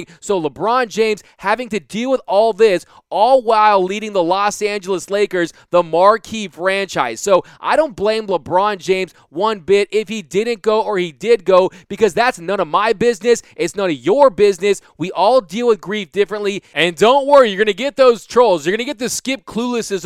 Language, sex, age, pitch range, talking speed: English, male, 20-39, 185-230 Hz, 205 wpm